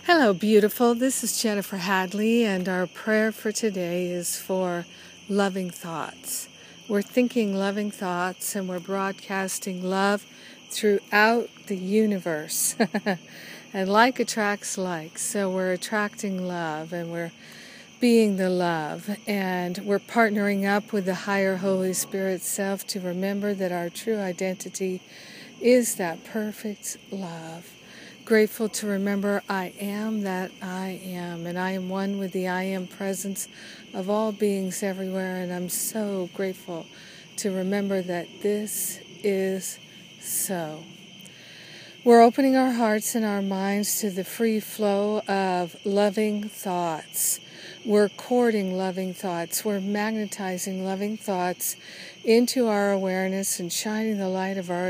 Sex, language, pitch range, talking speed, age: female, English, 185-210 Hz, 135 wpm, 50-69